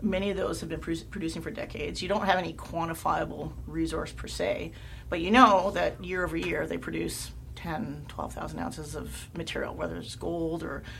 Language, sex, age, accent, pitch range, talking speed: English, female, 40-59, American, 115-185 Hz, 195 wpm